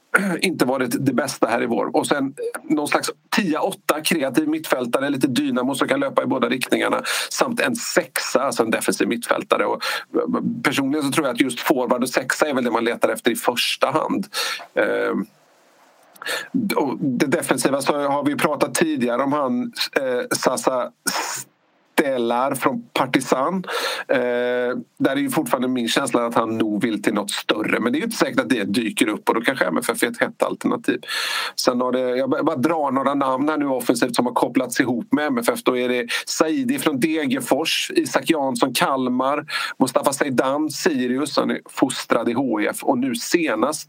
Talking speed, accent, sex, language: 180 wpm, native, male, Swedish